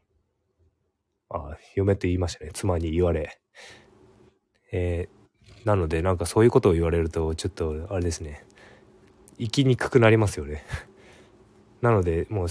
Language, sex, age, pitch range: Japanese, male, 20-39, 85-110 Hz